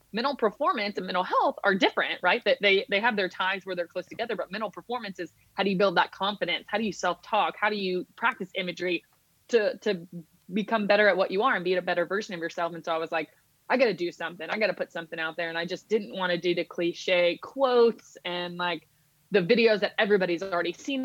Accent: American